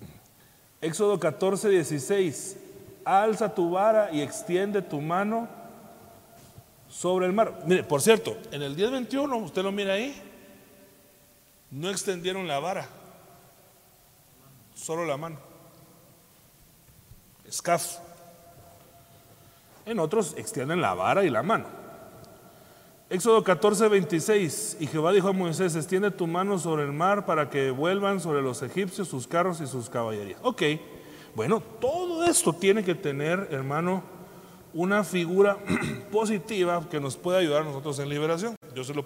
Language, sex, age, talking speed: Spanish, male, 40-59, 130 wpm